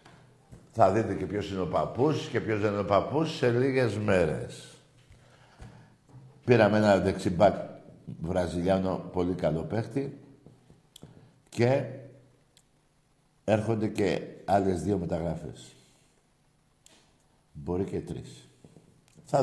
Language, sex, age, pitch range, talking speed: Greek, male, 60-79, 95-140 Hz, 95 wpm